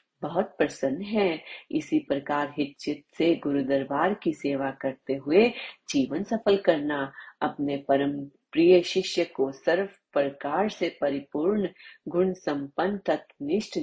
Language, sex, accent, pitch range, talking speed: Hindi, female, native, 140-185 Hz, 125 wpm